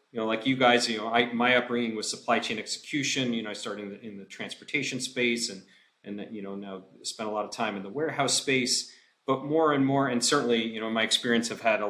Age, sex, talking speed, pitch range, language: 40-59, male, 255 wpm, 110-130 Hz, English